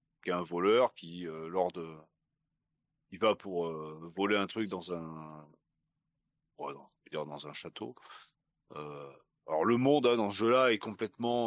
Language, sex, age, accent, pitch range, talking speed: French, male, 40-59, French, 80-115 Hz, 160 wpm